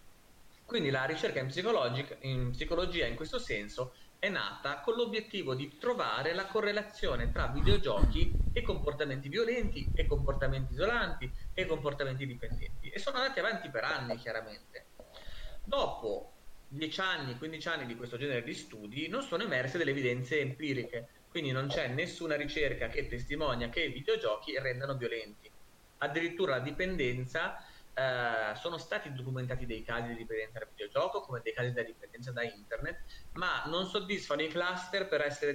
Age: 30-49